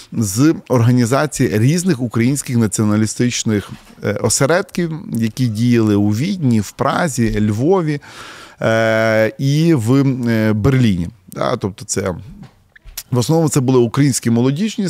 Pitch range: 115-150 Hz